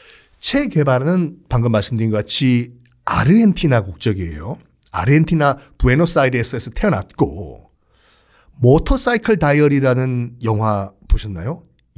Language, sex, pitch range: Korean, male, 115-170 Hz